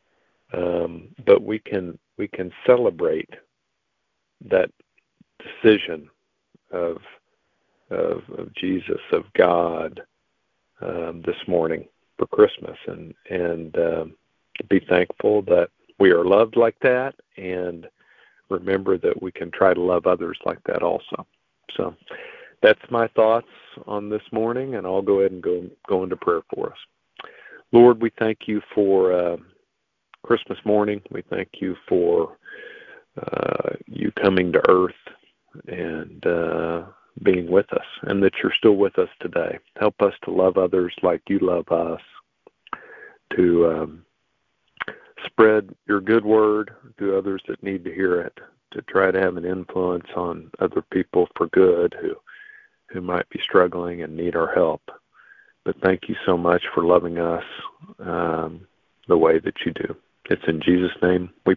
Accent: American